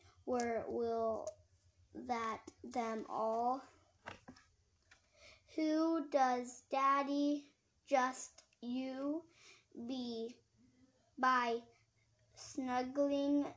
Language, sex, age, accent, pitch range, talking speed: English, female, 10-29, American, 230-265 Hz, 55 wpm